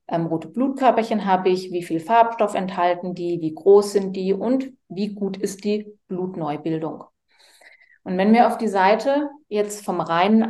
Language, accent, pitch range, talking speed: German, German, 185-245 Hz, 165 wpm